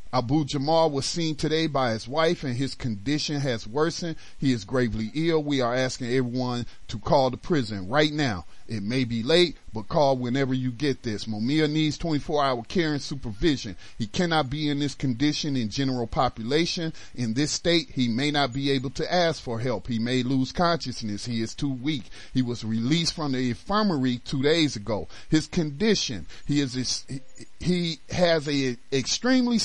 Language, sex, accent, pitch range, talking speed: English, male, American, 125-165 Hz, 180 wpm